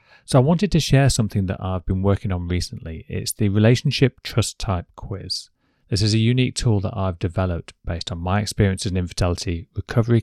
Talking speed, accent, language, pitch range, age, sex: 200 wpm, British, English, 90-115 Hz, 30-49, male